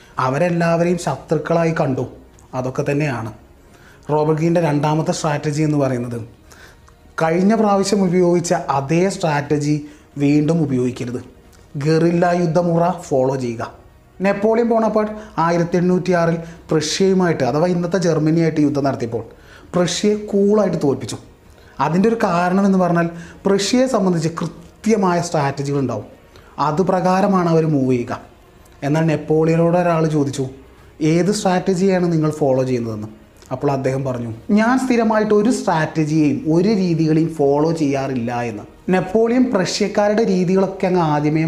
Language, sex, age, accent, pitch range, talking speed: Malayalam, male, 30-49, native, 140-180 Hz, 105 wpm